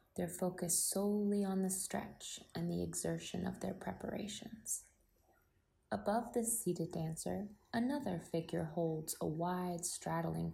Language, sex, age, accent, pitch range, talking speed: English, female, 20-39, American, 160-200 Hz, 125 wpm